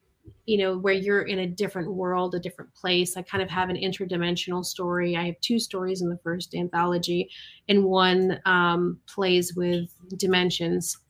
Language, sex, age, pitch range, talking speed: English, female, 30-49, 180-210 Hz, 175 wpm